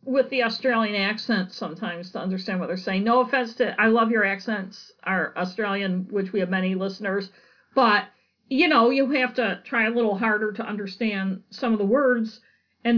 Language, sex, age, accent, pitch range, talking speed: English, female, 50-69, American, 205-265 Hz, 190 wpm